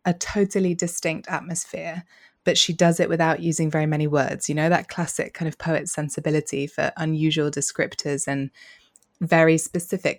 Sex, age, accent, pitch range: female, 20-39, British, 155-180 Hz